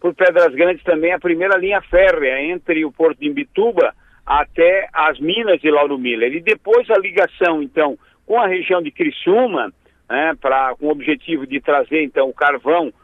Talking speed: 175 wpm